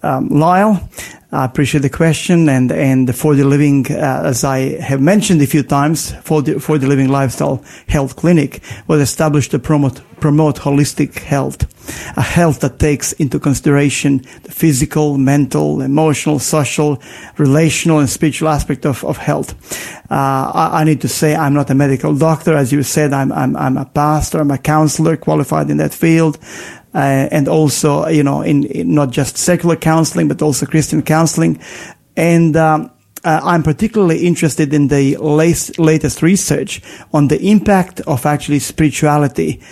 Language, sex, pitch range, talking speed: English, male, 140-160 Hz, 165 wpm